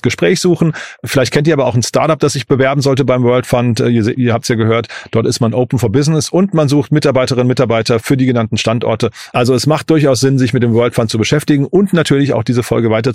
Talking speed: 260 wpm